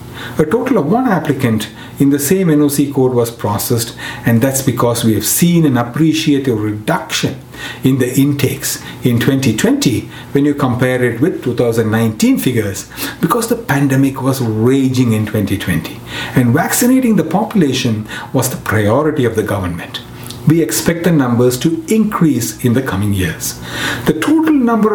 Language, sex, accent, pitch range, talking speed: English, male, Indian, 120-185 Hz, 150 wpm